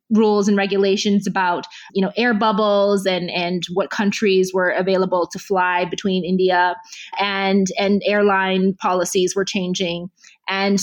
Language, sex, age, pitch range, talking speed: English, female, 20-39, 185-215 Hz, 140 wpm